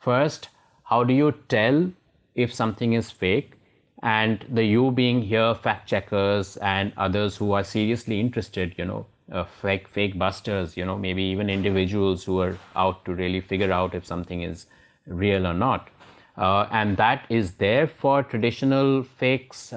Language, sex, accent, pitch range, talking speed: English, male, Indian, 100-125 Hz, 165 wpm